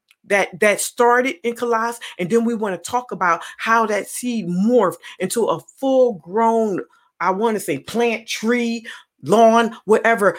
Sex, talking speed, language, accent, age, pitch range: female, 160 wpm, English, American, 40-59, 205-255 Hz